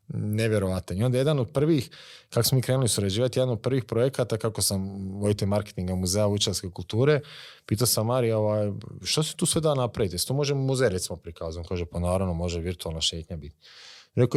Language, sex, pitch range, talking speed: Croatian, male, 95-130 Hz, 185 wpm